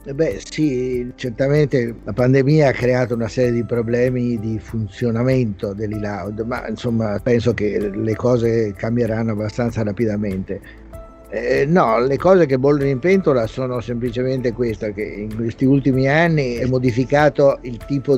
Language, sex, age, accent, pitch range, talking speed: Italian, male, 50-69, native, 105-125 Hz, 140 wpm